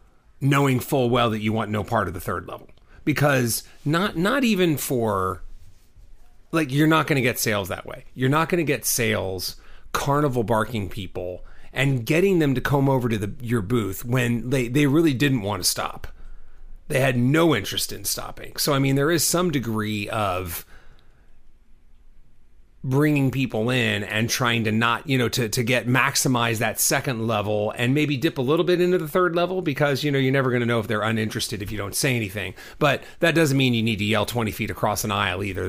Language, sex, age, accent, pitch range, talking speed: English, male, 30-49, American, 105-140 Hz, 205 wpm